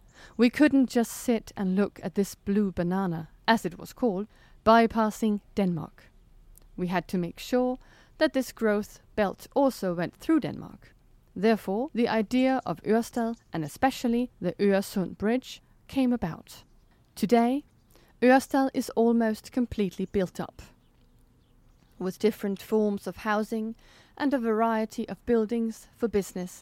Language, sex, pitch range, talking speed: Danish, female, 185-235 Hz, 135 wpm